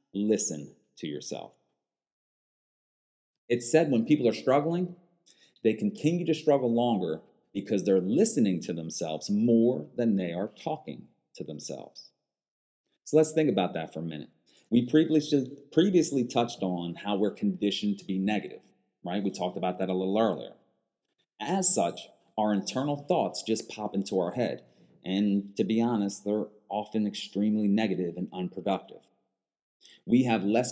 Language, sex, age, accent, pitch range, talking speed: English, male, 30-49, American, 95-120 Hz, 145 wpm